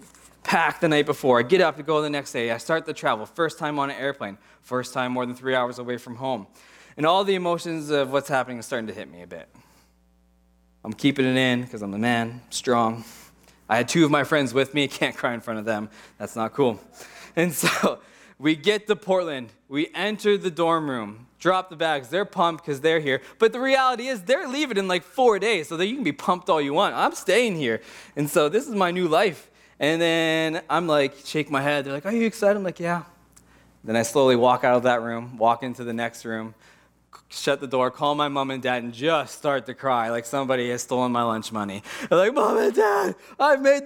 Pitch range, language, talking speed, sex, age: 125-195 Hz, English, 235 wpm, male, 20-39